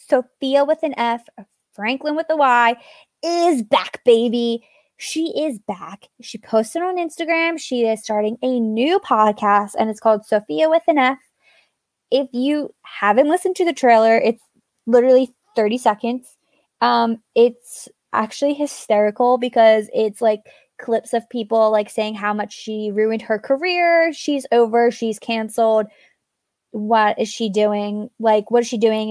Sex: female